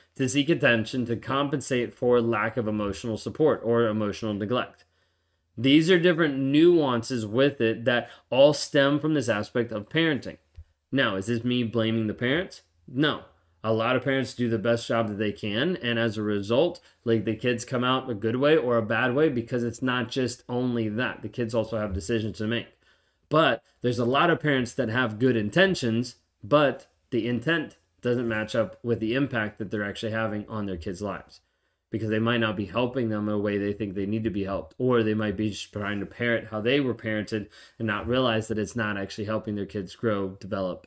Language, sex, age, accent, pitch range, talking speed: English, male, 20-39, American, 105-125 Hz, 210 wpm